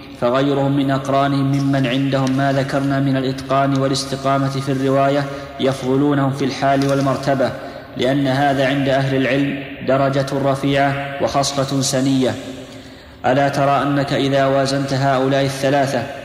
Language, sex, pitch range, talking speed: Arabic, male, 135-140 Hz, 120 wpm